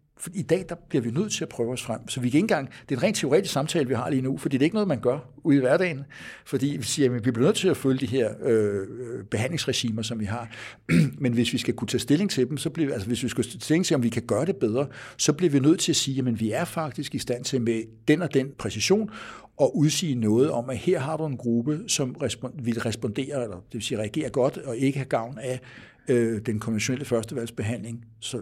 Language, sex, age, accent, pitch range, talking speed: Danish, male, 60-79, native, 115-145 Hz, 260 wpm